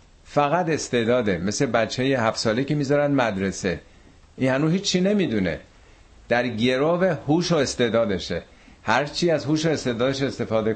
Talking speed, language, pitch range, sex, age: 140 wpm, Persian, 95-125 Hz, male, 50-69